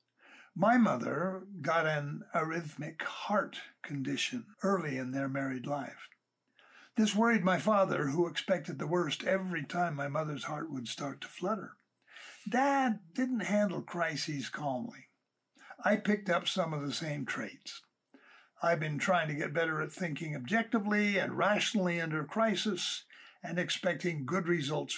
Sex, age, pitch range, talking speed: male, 60-79, 155-200 Hz, 140 wpm